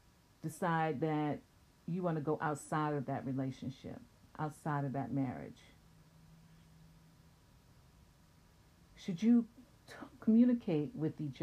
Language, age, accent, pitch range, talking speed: English, 50-69, American, 135-165 Hz, 100 wpm